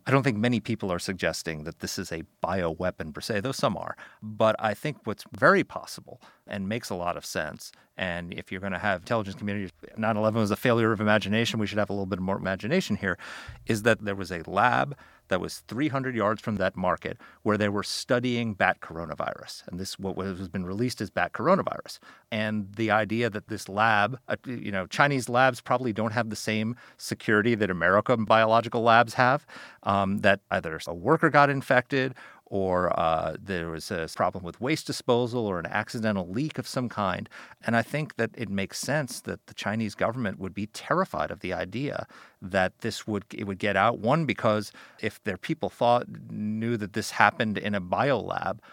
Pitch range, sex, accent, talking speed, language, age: 95-115 Hz, male, American, 200 wpm, English, 40-59